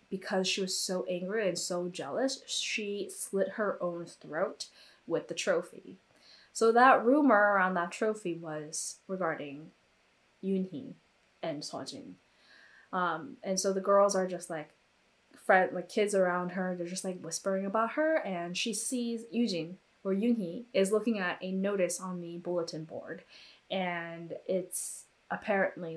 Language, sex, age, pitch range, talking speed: English, female, 10-29, 175-225 Hz, 150 wpm